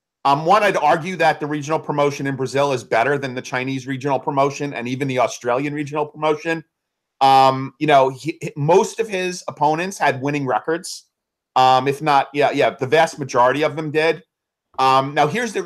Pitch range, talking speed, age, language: 130-165 Hz, 190 wpm, 40-59, English